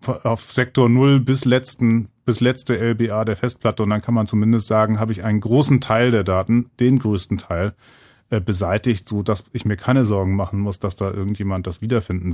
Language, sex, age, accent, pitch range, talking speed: German, male, 30-49, German, 105-130 Hz, 195 wpm